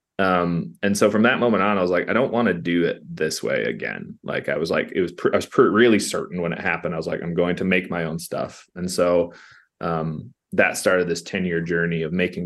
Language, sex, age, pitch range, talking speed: English, male, 20-39, 85-100 Hz, 250 wpm